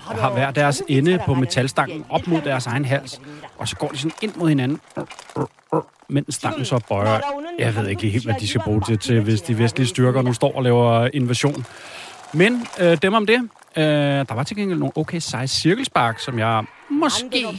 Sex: male